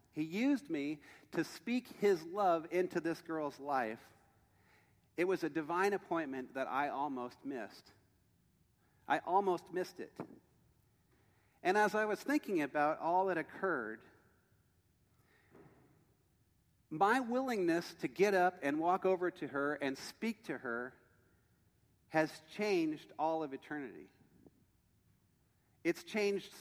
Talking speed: 120 wpm